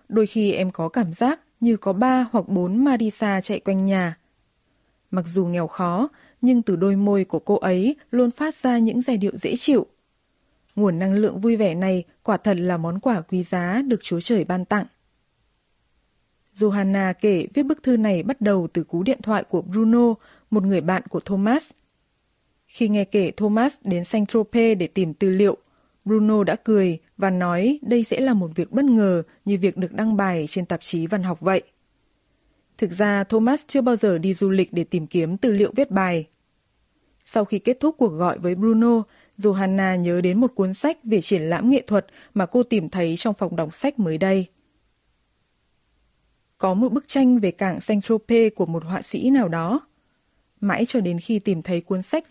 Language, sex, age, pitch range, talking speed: Vietnamese, female, 20-39, 185-235 Hz, 195 wpm